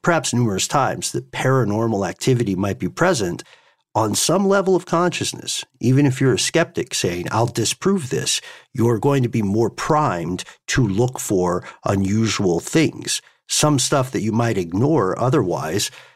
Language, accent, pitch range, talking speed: English, American, 105-130 Hz, 150 wpm